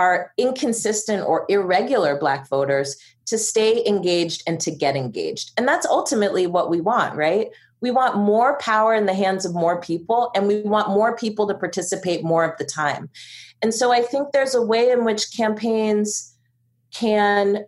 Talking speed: 175 wpm